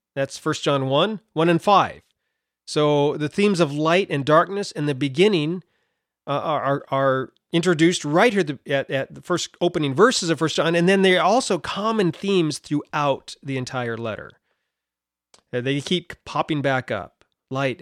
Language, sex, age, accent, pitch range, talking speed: English, male, 40-59, American, 130-175 Hz, 160 wpm